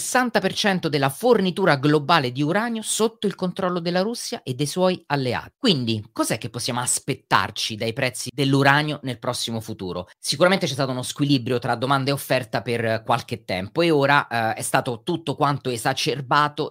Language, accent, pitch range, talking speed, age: Italian, native, 125-170 Hz, 160 wpm, 30-49